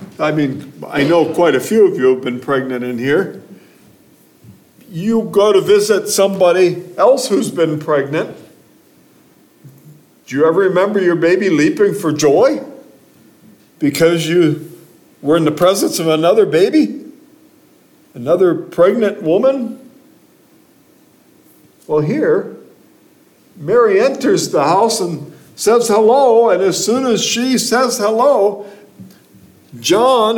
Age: 50-69